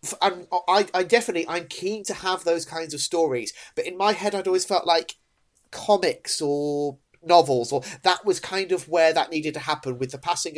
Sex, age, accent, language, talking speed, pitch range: male, 30-49, British, English, 205 wpm, 130-180 Hz